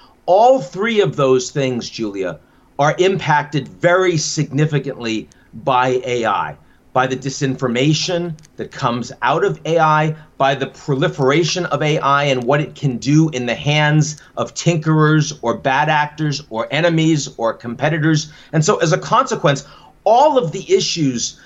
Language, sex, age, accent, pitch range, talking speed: English, male, 40-59, American, 130-160 Hz, 145 wpm